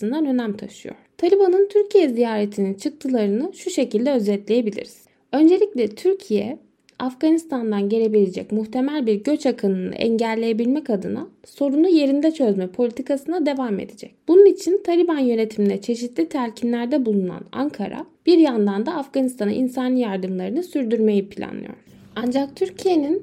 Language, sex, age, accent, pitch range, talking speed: Turkish, female, 10-29, native, 215-285 Hz, 110 wpm